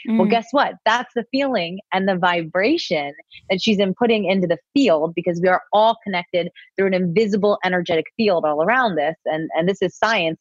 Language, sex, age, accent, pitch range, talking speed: English, female, 30-49, American, 175-235 Hz, 190 wpm